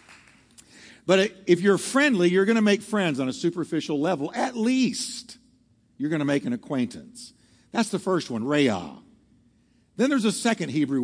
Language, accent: English, American